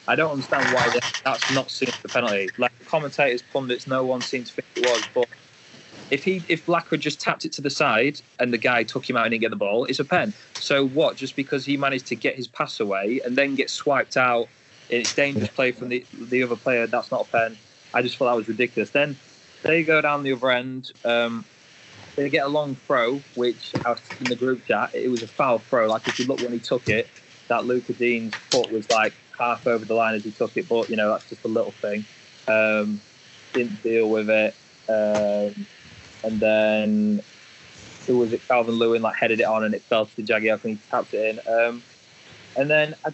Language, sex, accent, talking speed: English, male, British, 230 wpm